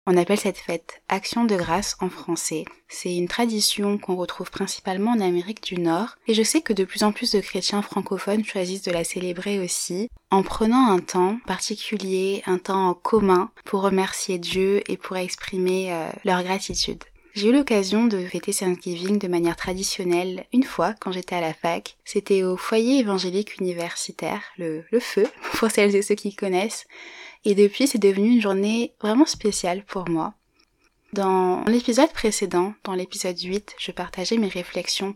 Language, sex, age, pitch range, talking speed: French, female, 20-39, 180-210 Hz, 180 wpm